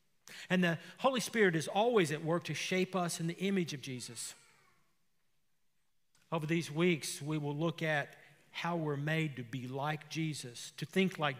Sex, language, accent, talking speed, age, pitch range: male, English, American, 175 wpm, 50-69, 130-165 Hz